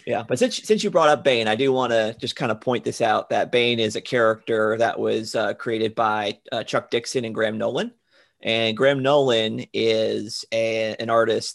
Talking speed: 215 wpm